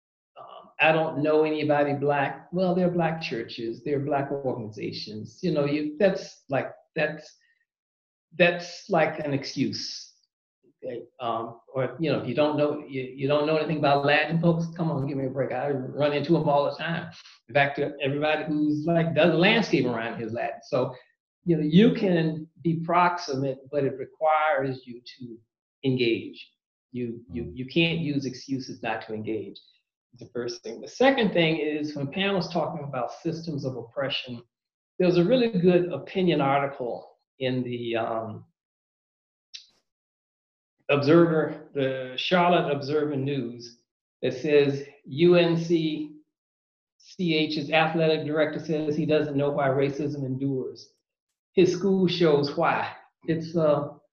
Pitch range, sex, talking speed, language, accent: 130-165 Hz, male, 145 wpm, English, American